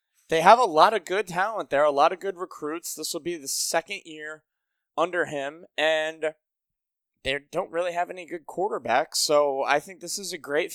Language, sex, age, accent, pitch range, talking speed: English, male, 20-39, American, 130-160 Hz, 200 wpm